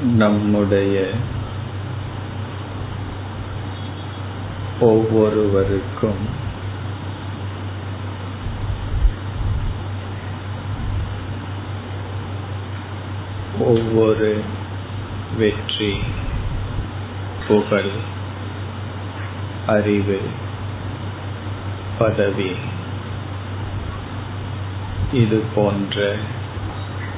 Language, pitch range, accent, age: Tamil, 100-105 Hz, native, 50-69